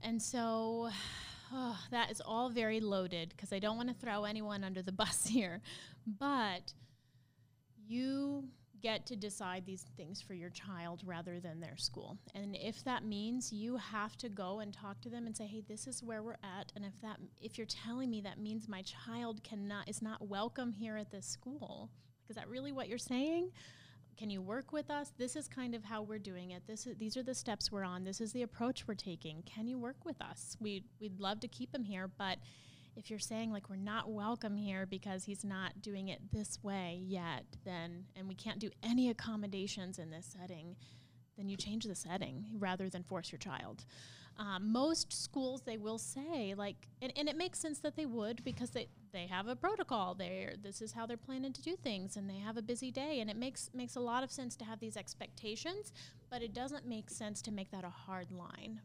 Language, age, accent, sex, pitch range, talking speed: English, 30-49, American, female, 190-245 Hz, 215 wpm